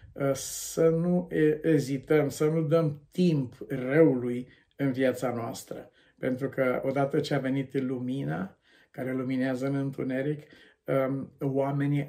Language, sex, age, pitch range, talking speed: Romanian, male, 50-69, 130-150 Hz, 115 wpm